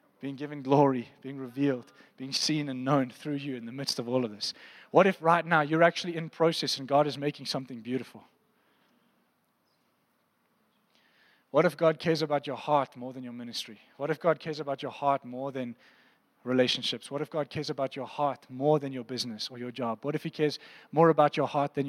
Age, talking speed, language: 20-39, 210 wpm, English